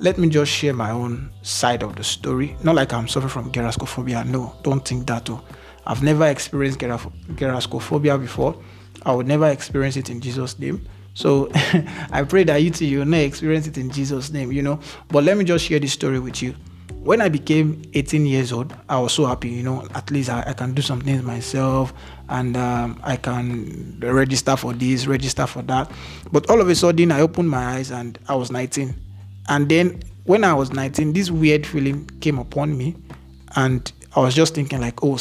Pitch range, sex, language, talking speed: 125-150 Hz, male, English, 205 wpm